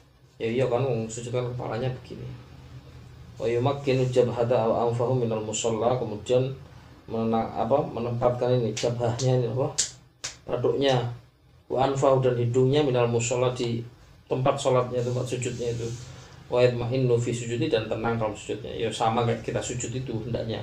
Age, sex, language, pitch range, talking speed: 20-39, male, Malay, 115-130 Hz, 145 wpm